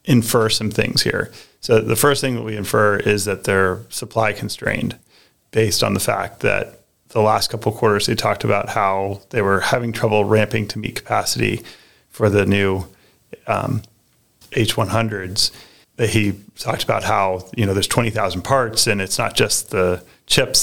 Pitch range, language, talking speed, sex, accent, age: 100-115 Hz, English, 180 wpm, male, American, 30-49